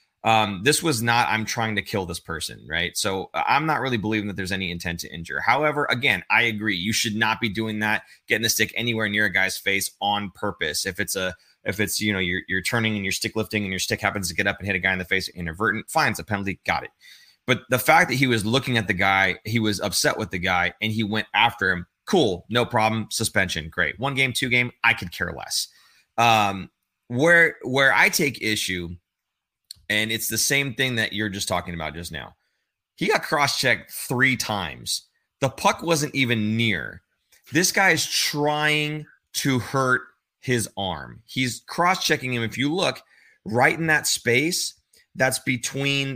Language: English